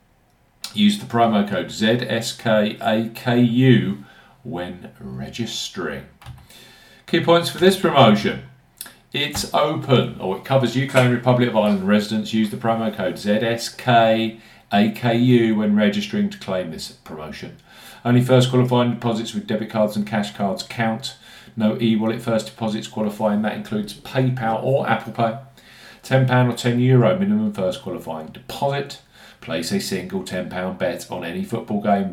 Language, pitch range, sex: English, 110-130 Hz, male